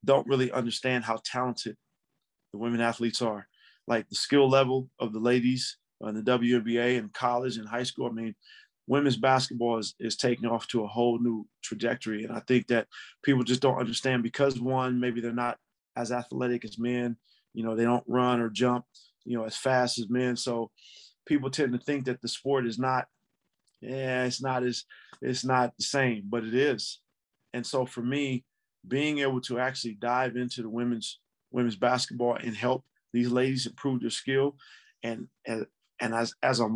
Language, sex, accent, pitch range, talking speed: English, male, American, 120-130 Hz, 190 wpm